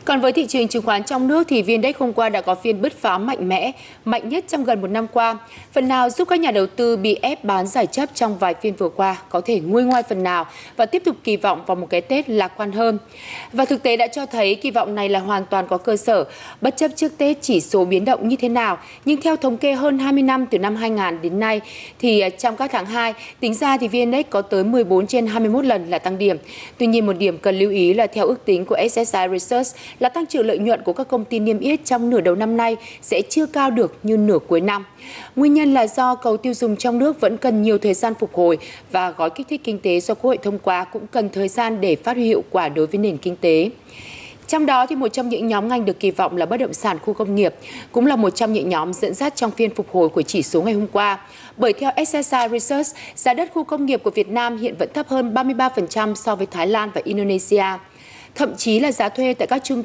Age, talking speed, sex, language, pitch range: 20-39, 265 wpm, female, Vietnamese, 200-255 Hz